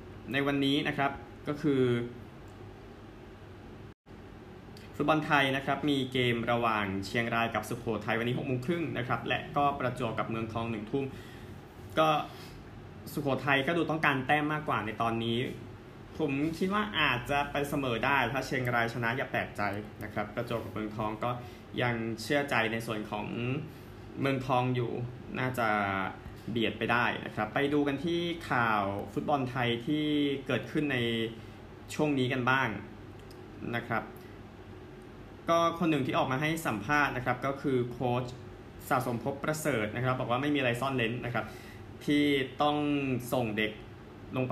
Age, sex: 20-39, male